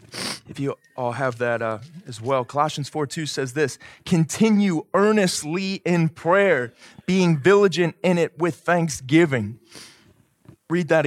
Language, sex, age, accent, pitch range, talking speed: English, male, 20-39, American, 145-195 Hz, 130 wpm